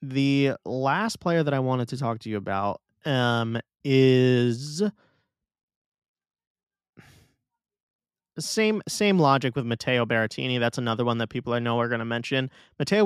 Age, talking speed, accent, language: 20-39, 145 wpm, American, English